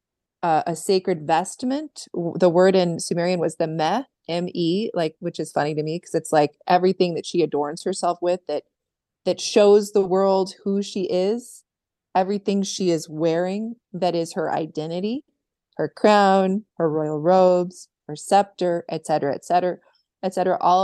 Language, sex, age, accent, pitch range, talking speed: English, female, 30-49, American, 165-195 Hz, 160 wpm